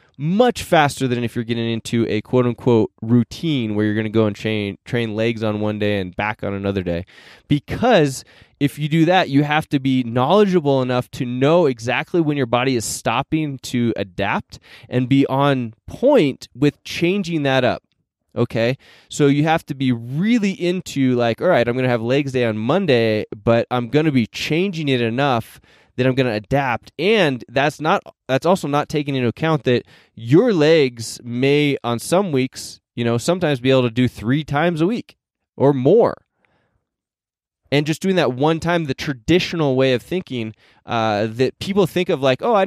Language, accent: English, American